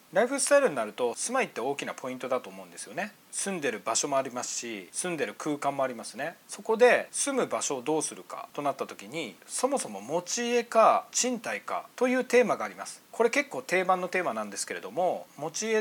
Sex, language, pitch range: male, Japanese, 165-235 Hz